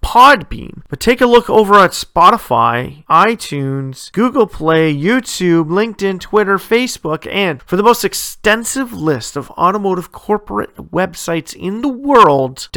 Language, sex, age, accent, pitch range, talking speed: English, male, 40-59, American, 150-200 Hz, 125 wpm